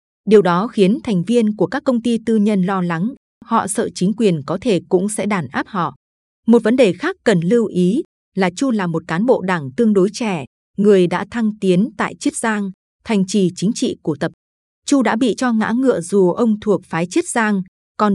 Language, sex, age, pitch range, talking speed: Vietnamese, female, 20-39, 180-230 Hz, 220 wpm